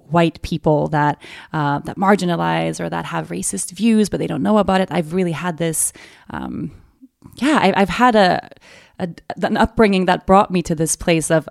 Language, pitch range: English, 165-195 Hz